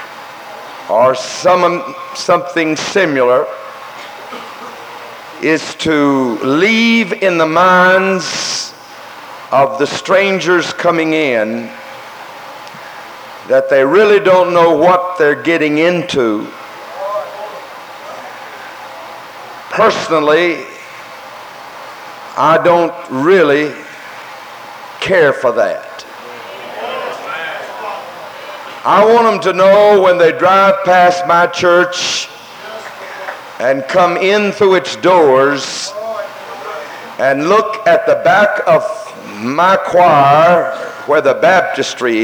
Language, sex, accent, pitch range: English, male, American, 160-200 Hz